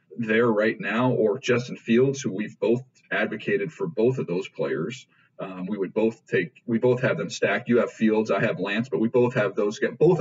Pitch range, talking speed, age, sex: 115-140 Hz, 225 wpm, 40-59, male